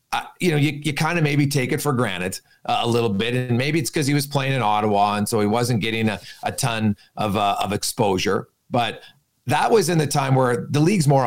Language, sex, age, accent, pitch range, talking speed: English, male, 40-59, American, 120-155 Hz, 250 wpm